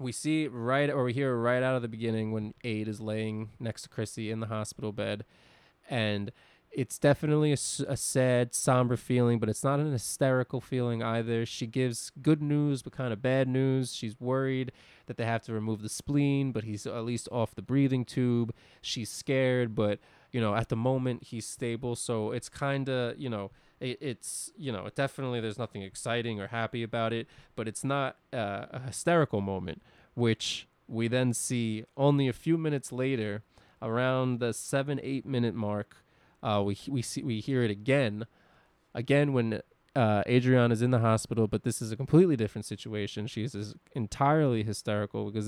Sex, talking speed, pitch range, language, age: male, 185 wpm, 110-130 Hz, English, 20-39